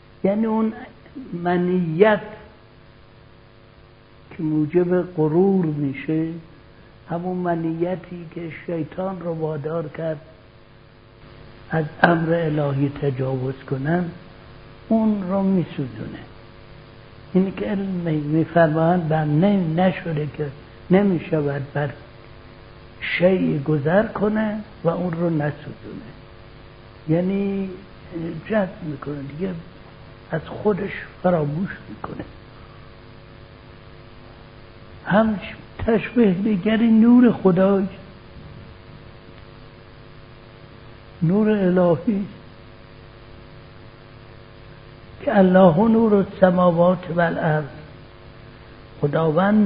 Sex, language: male, Persian